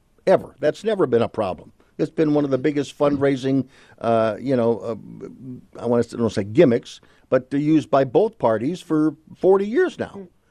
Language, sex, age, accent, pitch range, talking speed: English, male, 50-69, American, 115-145 Hz, 210 wpm